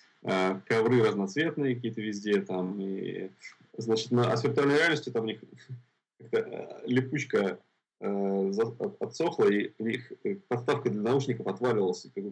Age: 20-39